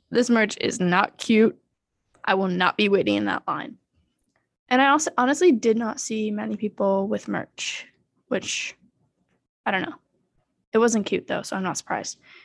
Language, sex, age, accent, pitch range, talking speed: English, female, 10-29, American, 190-225 Hz, 175 wpm